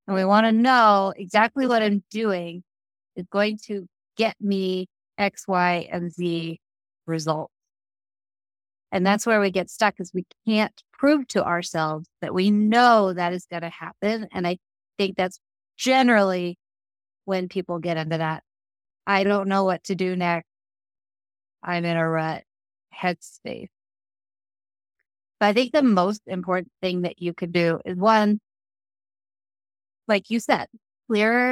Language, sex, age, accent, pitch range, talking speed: English, female, 30-49, American, 170-205 Hz, 150 wpm